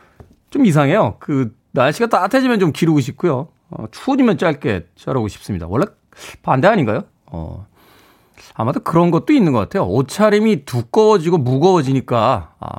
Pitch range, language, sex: 125-195 Hz, Korean, male